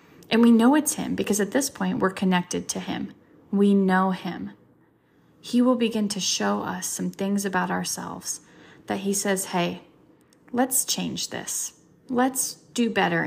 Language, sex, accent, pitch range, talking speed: English, female, American, 180-225 Hz, 165 wpm